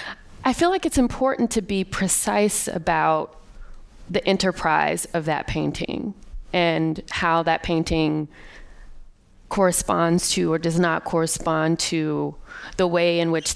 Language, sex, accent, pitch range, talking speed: English, female, American, 165-210 Hz, 130 wpm